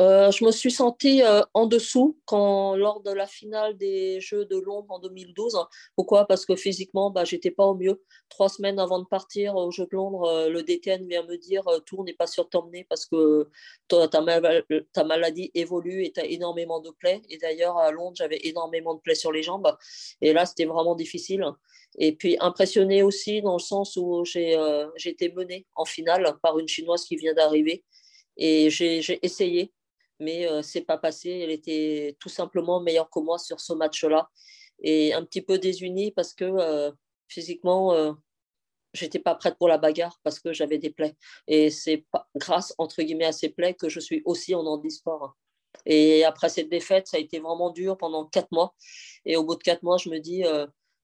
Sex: female